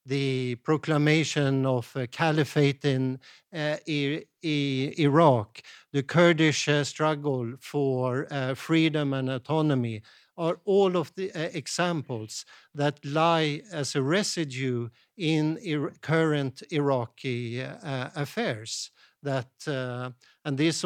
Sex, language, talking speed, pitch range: male, English, 115 wpm, 130-160 Hz